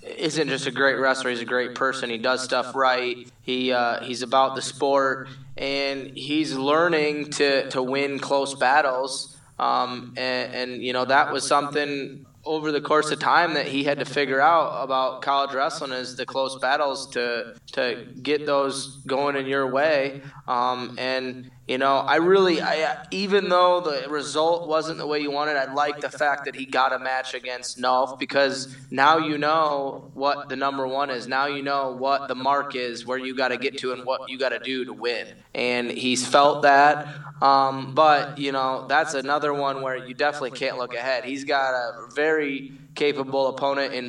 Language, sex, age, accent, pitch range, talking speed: English, male, 20-39, American, 130-145 Hz, 195 wpm